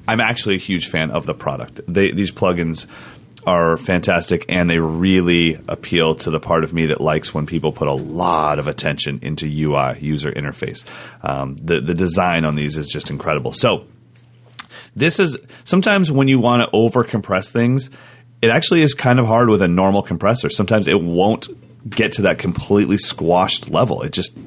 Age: 30-49